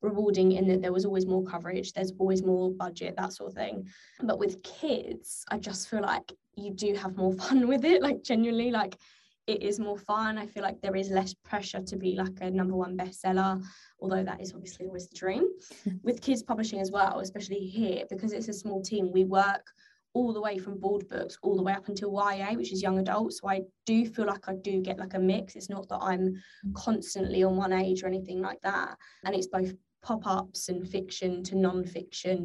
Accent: British